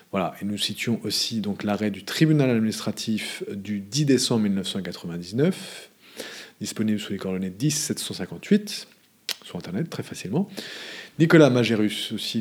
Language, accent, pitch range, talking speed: English, French, 105-135 Hz, 130 wpm